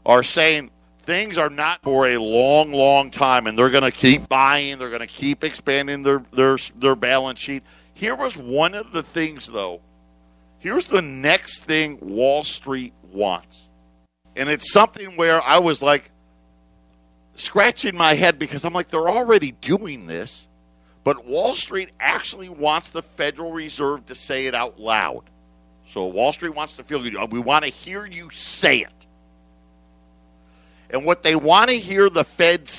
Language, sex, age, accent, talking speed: English, male, 50-69, American, 170 wpm